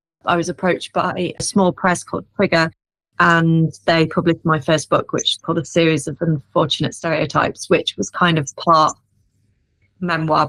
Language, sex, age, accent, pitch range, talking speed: English, female, 30-49, British, 160-200 Hz, 160 wpm